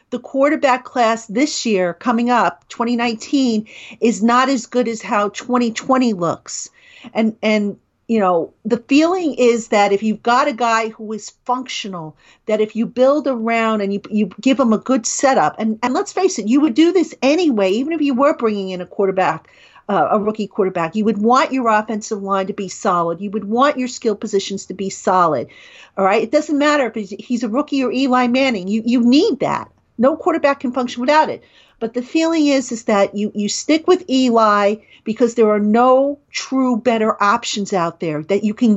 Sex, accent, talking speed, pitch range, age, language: female, American, 205 wpm, 210-255 Hz, 50-69, English